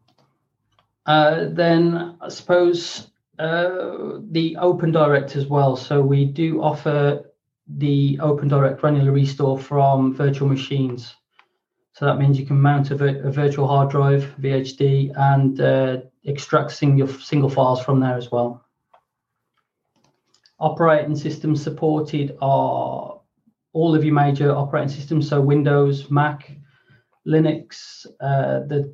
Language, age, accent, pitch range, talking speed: English, 30-49, British, 140-150 Hz, 120 wpm